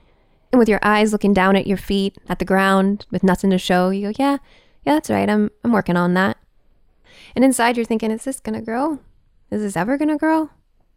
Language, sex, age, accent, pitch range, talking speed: English, female, 10-29, American, 205-305 Hz, 230 wpm